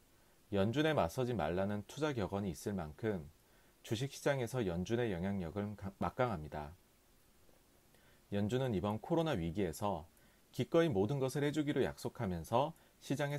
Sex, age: male, 40-59